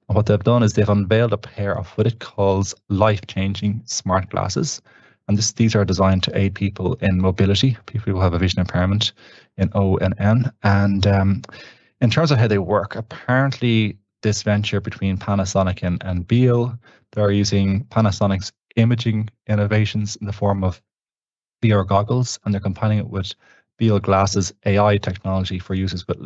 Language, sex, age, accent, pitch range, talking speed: English, male, 20-39, Irish, 95-110 Hz, 170 wpm